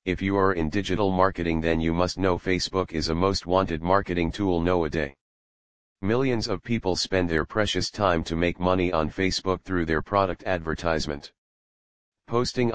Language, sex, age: English, male, 40-59